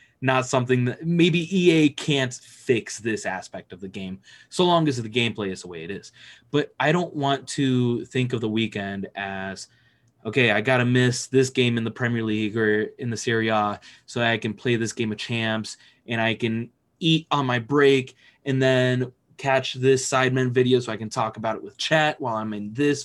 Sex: male